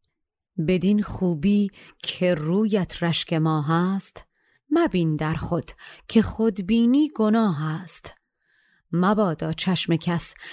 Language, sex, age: Persian, female, 30-49